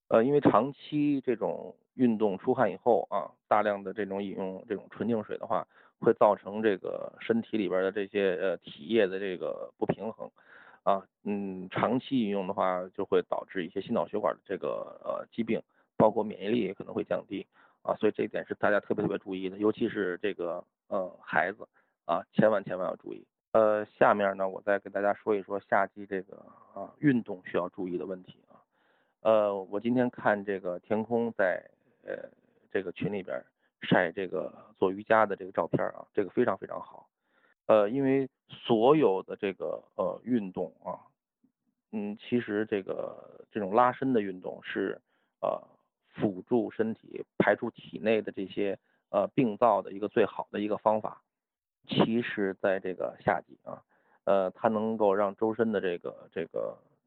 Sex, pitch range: male, 100-125 Hz